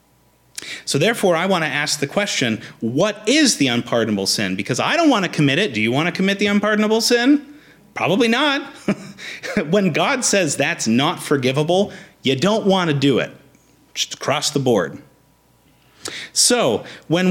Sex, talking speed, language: male, 165 wpm, English